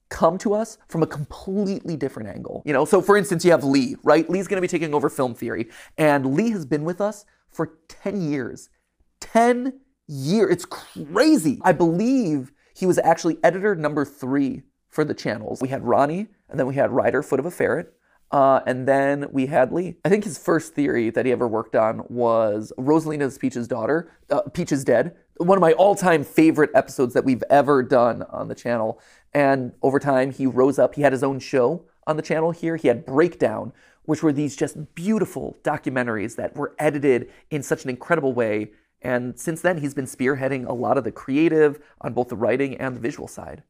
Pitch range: 135-170 Hz